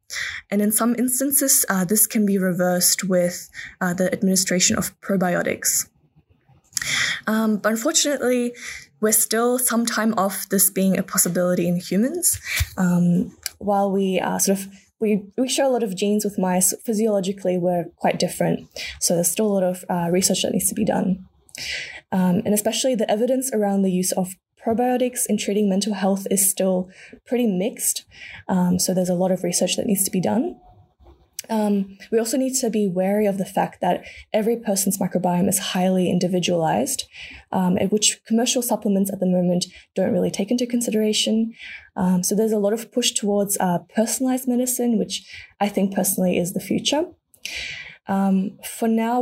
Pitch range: 185-225 Hz